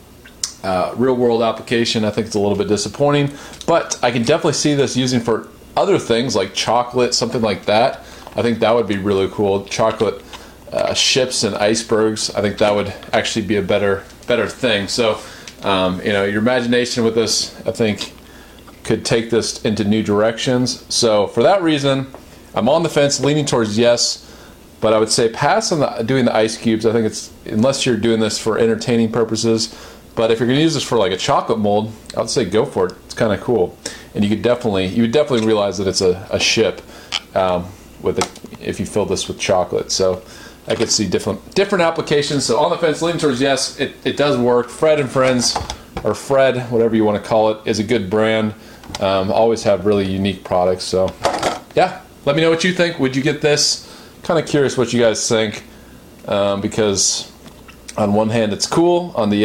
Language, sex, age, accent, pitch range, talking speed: English, male, 30-49, American, 105-130 Hz, 205 wpm